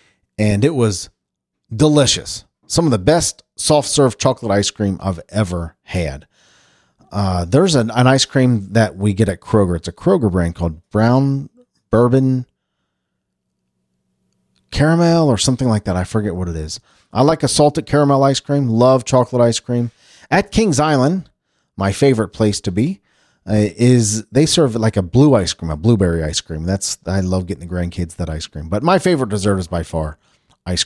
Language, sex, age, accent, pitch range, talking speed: English, male, 40-59, American, 90-135 Hz, 180 wpm